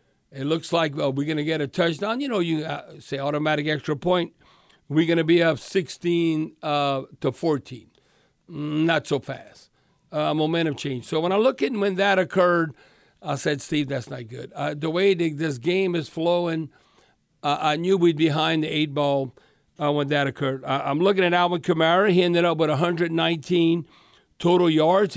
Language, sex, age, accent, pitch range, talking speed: English, male, 60-79, American, 150-185 Hz, 185 wpm